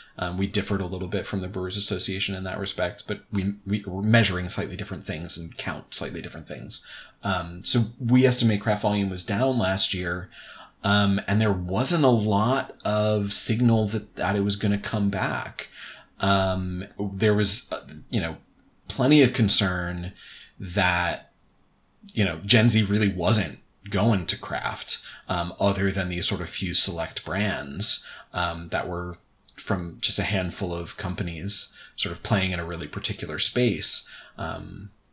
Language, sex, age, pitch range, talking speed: English, male, 30-49, 95-115 Hz, 165 wpm